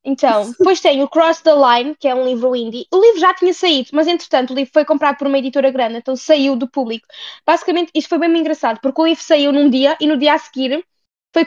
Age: 10-29